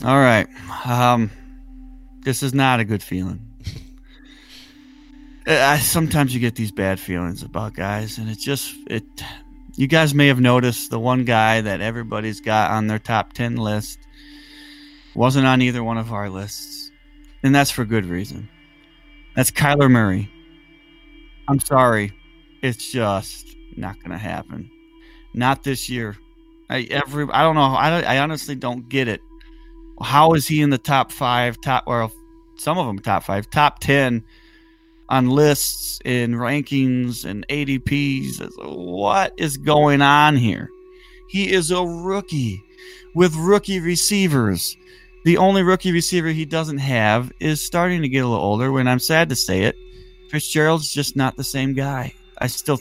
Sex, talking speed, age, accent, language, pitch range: male, 155 wpm, 30-49, American, English, 120-185 Hz